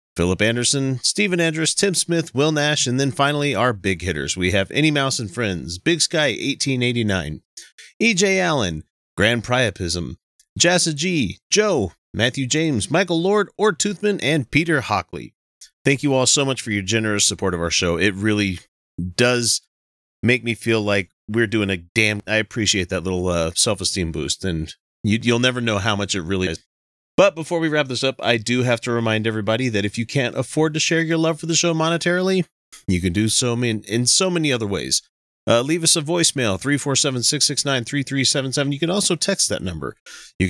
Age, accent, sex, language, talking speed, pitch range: 30-49, American, male, English, 185 wpm, 95-145 Hz